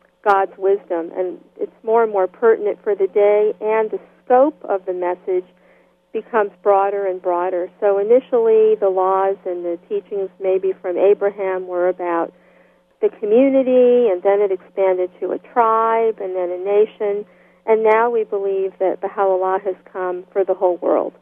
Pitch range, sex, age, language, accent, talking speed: 195-250 Hz, female, 50-69, English, American, 165 wpm